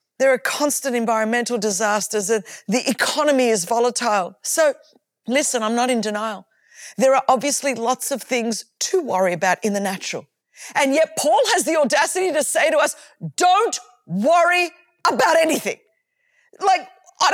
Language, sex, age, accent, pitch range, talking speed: English, female, 40-59, Australian, 245-320 Hz, 150 wpm